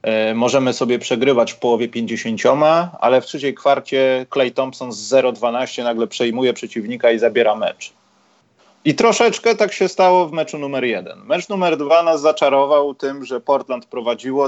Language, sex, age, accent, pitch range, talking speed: Polish, male, 30-49, native, 120-165 Hz, 160 wpm